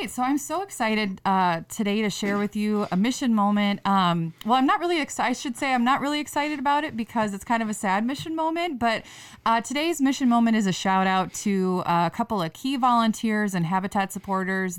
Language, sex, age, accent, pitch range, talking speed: English, female, 20-39, American, 180-220 Hz, 220 wpm